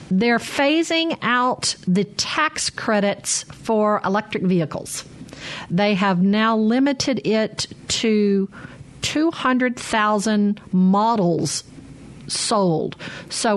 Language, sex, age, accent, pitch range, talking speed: English, female, 50-69, American, 180-225 Hz, 95 wpm